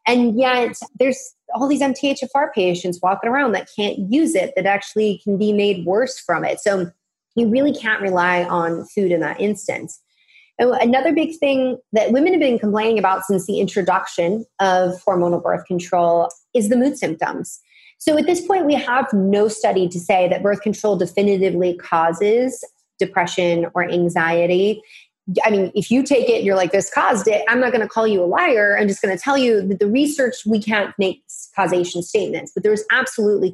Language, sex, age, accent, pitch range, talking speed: English, female, 30-49, American, 185-230 Hz, 185 wpm